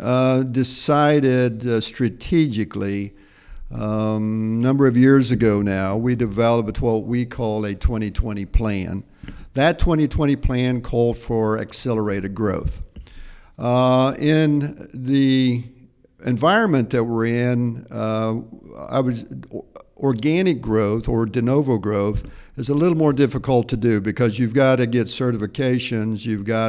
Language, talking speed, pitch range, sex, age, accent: English, 120 wpm, 110-125 Hz, male, 50-69, American